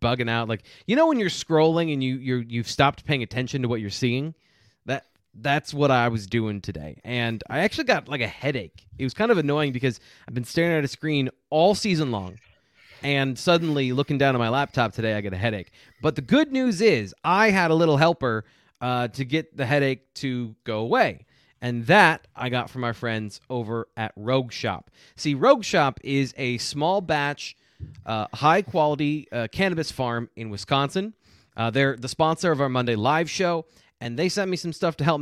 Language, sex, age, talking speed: English, male, 30-49, 210 wpm